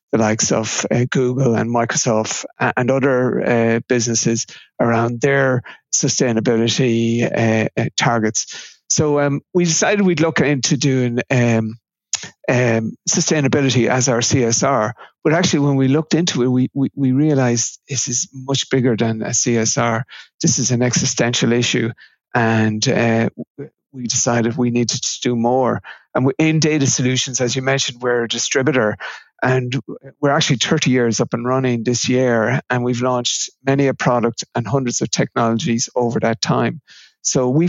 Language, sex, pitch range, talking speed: English, male, 120-135 Hz, 155 wpm